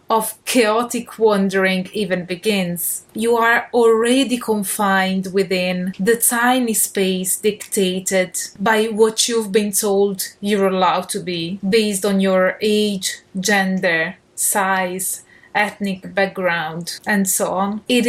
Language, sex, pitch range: English, female, 190-230 Hz